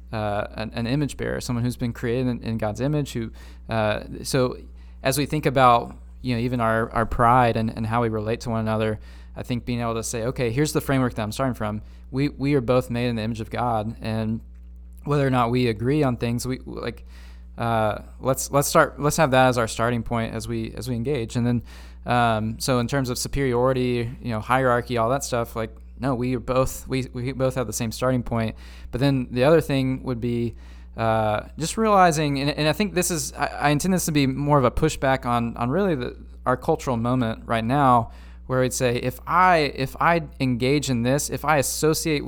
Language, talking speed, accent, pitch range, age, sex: English, 225 wpm, American, 110-140 Hz, 20-39, male